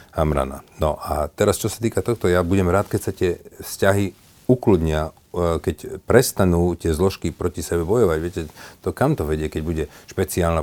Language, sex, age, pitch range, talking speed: Slovak, male, 40-59, 80-100 Hz, 175 wpm